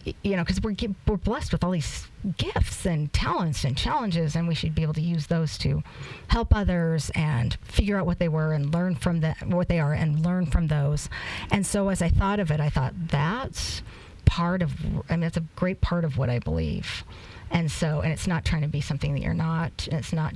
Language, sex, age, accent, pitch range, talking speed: English, female, 40-59, American, 145-175 Hz, 235 wpm